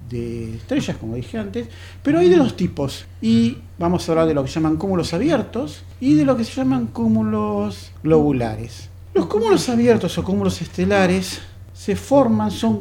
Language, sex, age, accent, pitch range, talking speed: Spanish, male, 40-59, Argentinian, 115-180 Hz, 180 wpm